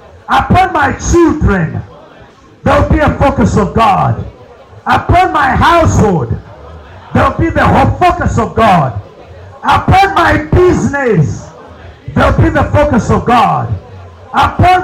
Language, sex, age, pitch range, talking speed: English, male, 50-69, 195-270 Hz, 115 wpm